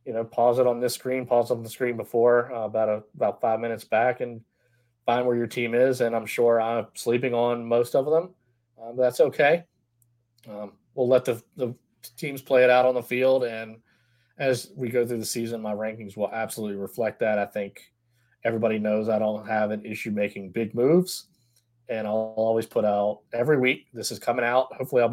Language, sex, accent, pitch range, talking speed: English, male, American, 110-125 Hz, 205 wpm